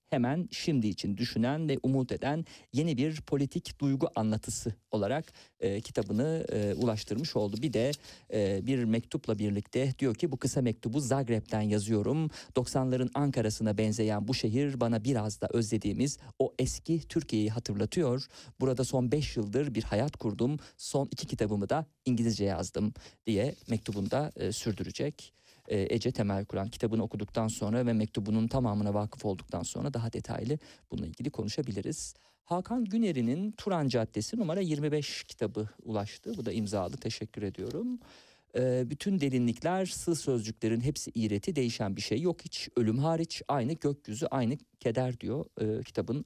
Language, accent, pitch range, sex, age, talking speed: Turkish, native, 110-140 Hz, male, 40-59, 145 wpm